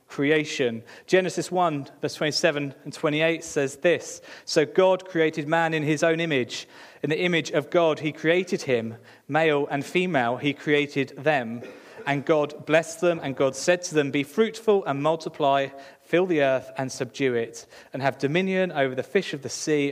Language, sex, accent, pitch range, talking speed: English, male, British, 135-165 Hz, 180 wpm